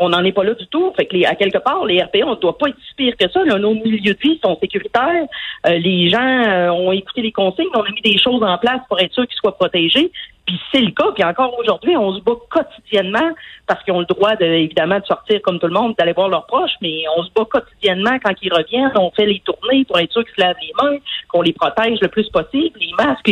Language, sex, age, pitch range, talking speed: French, female, 40-59, 175-240 Hz, 275 wpm